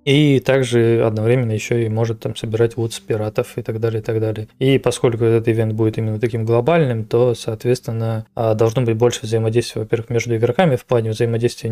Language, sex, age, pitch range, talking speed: Russian, male, 20-39, 115-125 Hz, 185 wpm